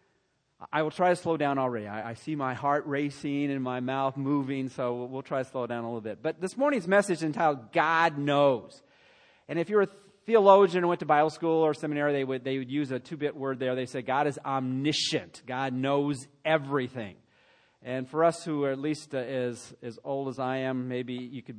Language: English